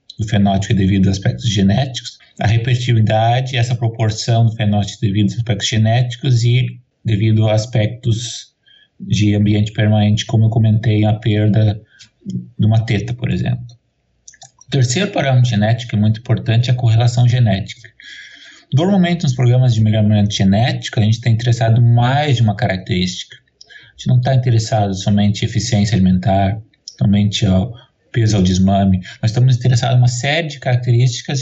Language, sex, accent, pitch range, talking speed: Portuguese, male, Brazilian, 105-125 Hz, 150 wpm